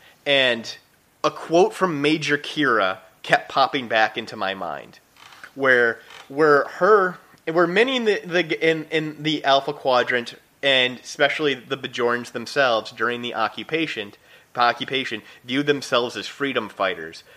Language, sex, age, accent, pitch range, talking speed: English, male, 30-49, American, 125-160 Hz, 135 wpm